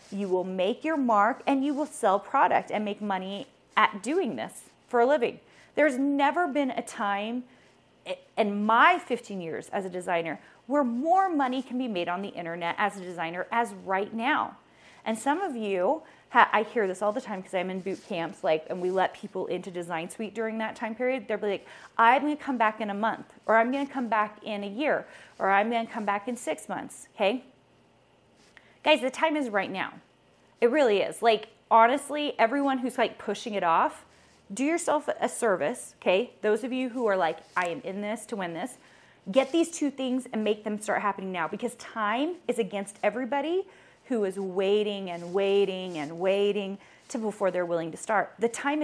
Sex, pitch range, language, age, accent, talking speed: female, 185-255 Hz, English, 30-49, American, 210 wpm